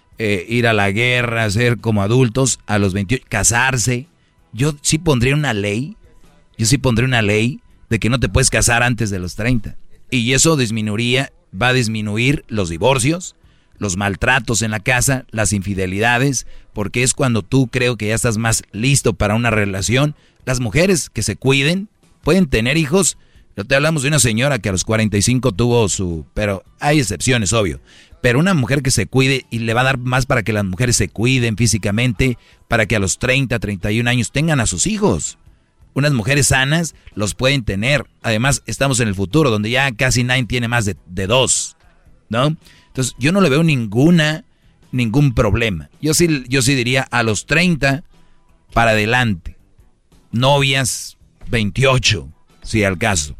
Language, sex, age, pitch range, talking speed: Spanish, male, 40-59, 105-135 Hz, 180 wpm